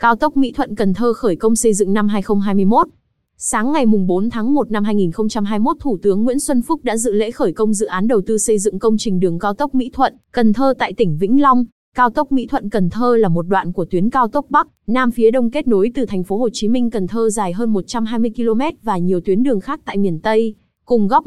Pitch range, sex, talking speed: 205-250 Hz, female, 255 wpm